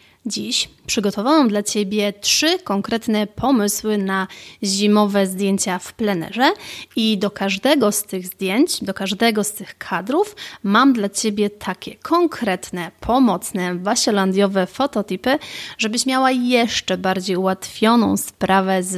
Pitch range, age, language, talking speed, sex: 190-240 Hz, 30-49, Polish, 120 wpm, female